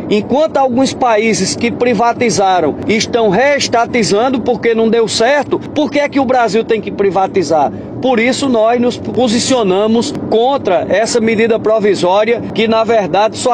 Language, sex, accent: Portuguese, male, Brazilian